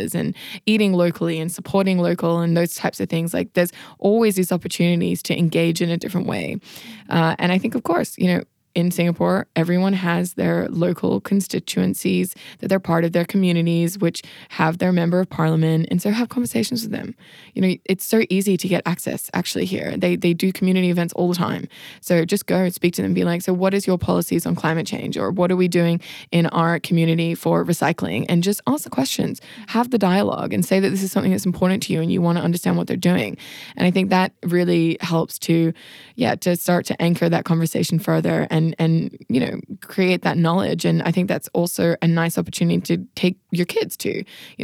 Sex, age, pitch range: female, 20-39, 165-190 Hz